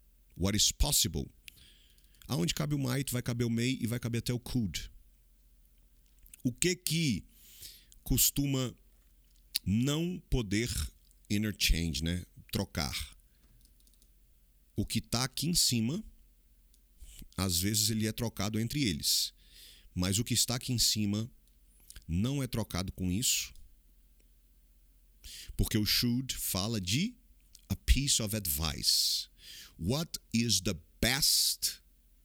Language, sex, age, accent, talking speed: English, male, 40-59, Brazilian, 120 wpm